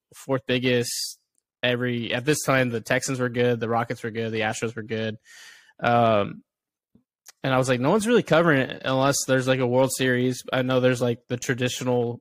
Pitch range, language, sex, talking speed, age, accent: 120-140 Hz, English, male, 195 wpm, 20-39, American